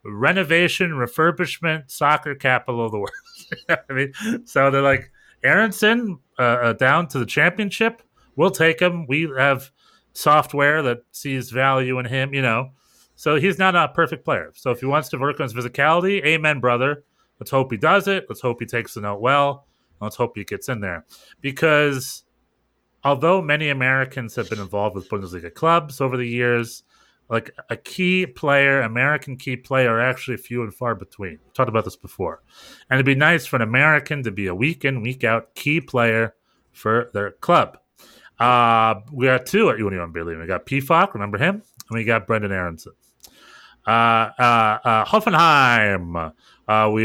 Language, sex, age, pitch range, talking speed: English, male, 30-49, 115-160 Hz, 180 wpm